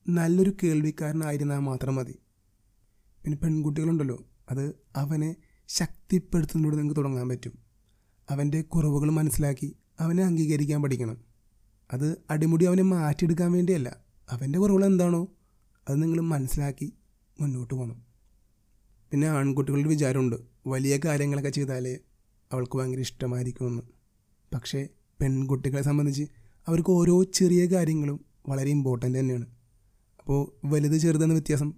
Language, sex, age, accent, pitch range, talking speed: Malayalam, male, 30-49, native, 125-155 Hz, 100 wpm